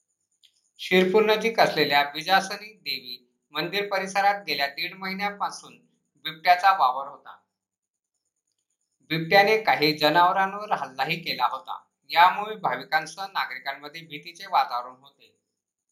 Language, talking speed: Marathi, 90 wpm